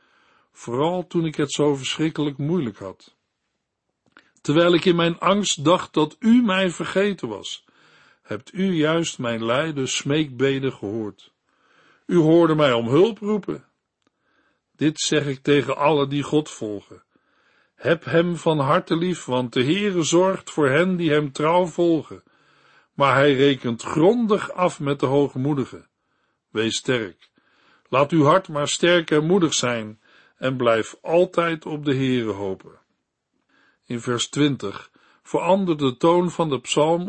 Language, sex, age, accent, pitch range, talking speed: Dutch, male, 60-79, Dutch, 135-170 Hz, 145 wpm